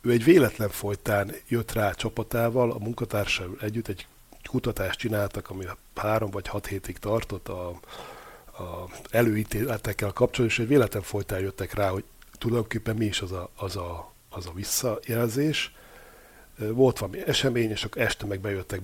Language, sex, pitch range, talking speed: Hungarian, male, 95-120 Hz, 155 wpm